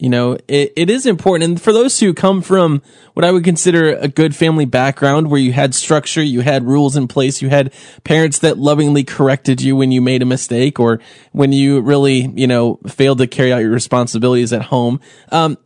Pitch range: 135-180 Hz